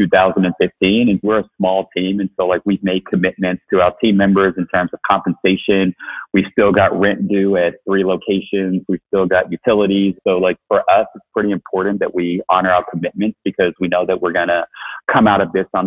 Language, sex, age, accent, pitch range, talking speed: English, male, 40-59, American, 85-95 Hz, 210 wpm